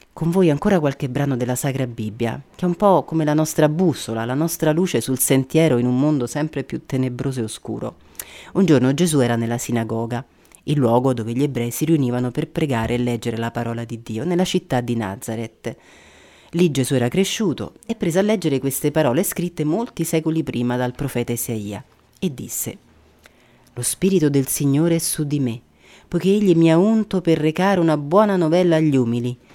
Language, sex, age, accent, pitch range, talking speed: Italian, female, 30-49, native, 120-165 Hz, 190 wpm